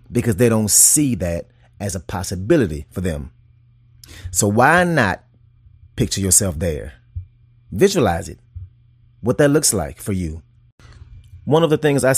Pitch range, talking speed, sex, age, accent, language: 95-120 Hz, 145 wpm, male, 30-49, American, English